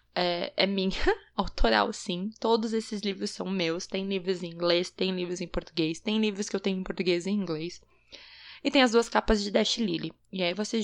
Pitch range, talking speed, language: 180-245 Hz, 215 wpm, Portuguese